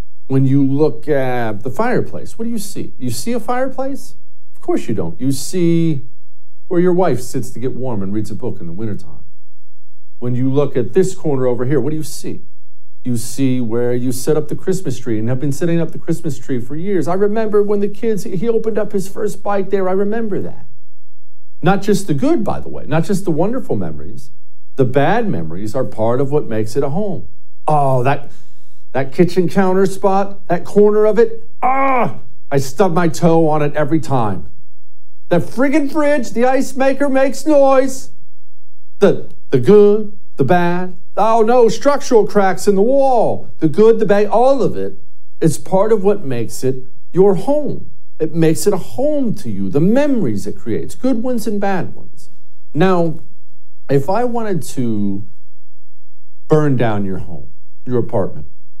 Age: 50-69